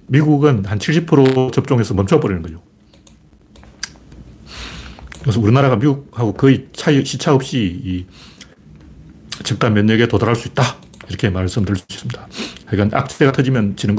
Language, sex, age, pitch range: Korean, male, 40-59, 100-135 Hz